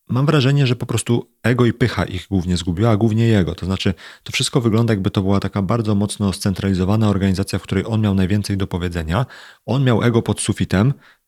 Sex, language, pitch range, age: male, Polish, 95-125 Hz, 40-59